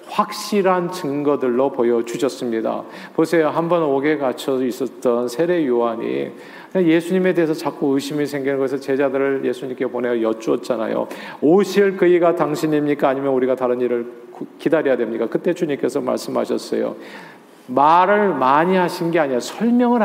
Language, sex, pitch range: Korean, male, 140-210 Hz